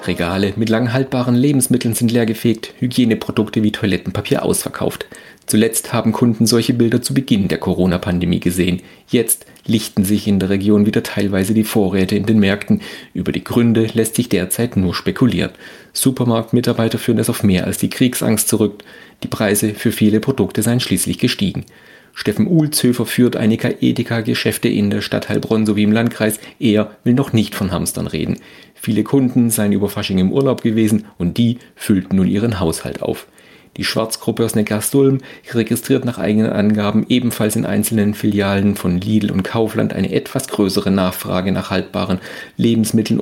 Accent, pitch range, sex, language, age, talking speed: German, 100-115 Hz, male, German, 40-59, 160 wpm